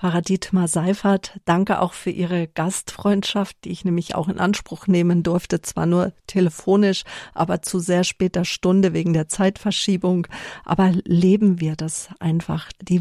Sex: female